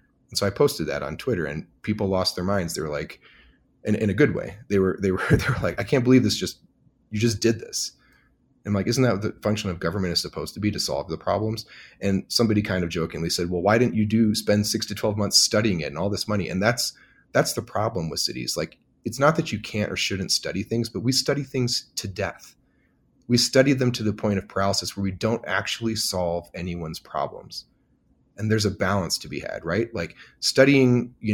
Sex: male